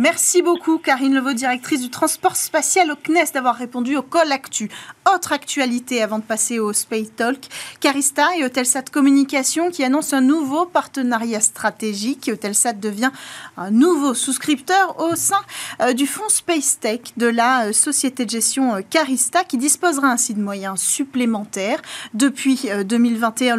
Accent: French